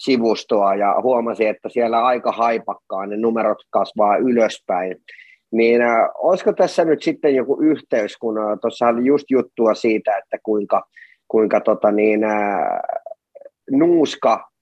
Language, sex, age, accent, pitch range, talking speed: Finnish, male, 30-49, native, 105-130 Hz, 130 wpm